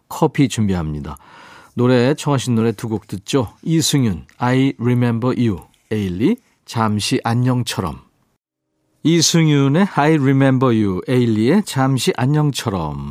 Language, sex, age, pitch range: Korean, male, 40-59, 110-150 Hz